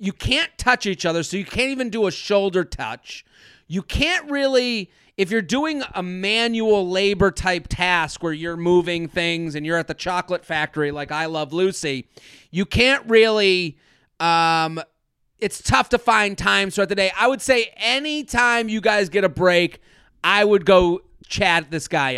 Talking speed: 175 wpm